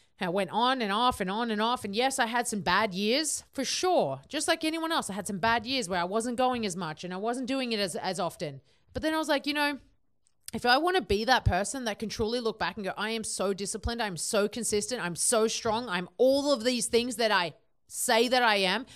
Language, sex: English, female